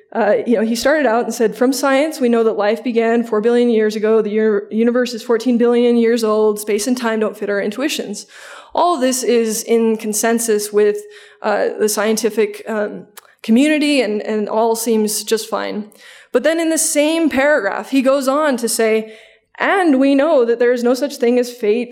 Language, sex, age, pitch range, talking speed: English, female, 20-39, 220-250 Hz, 195 wpm